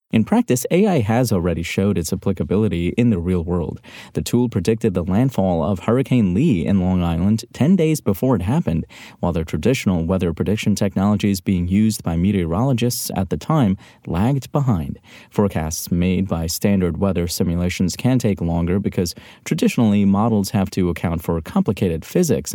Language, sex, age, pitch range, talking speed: English, male, 30-49, 90-115 Hz, 160 wpm